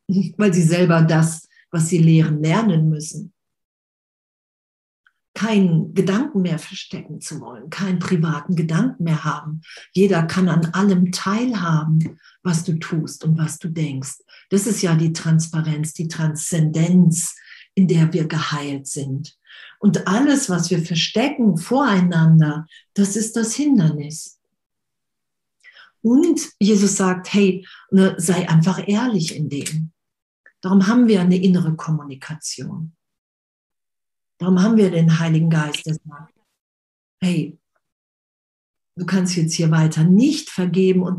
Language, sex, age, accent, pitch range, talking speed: German, female, 50-69, German, 160-195 Hz, 125 wpm